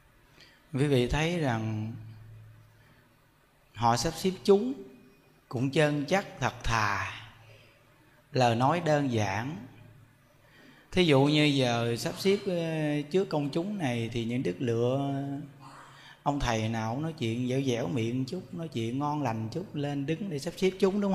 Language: Vietnamese